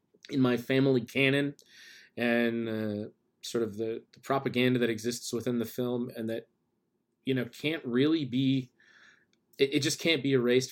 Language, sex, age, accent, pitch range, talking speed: English, male, 30-49, American, 115-135 Hz, 160 wpm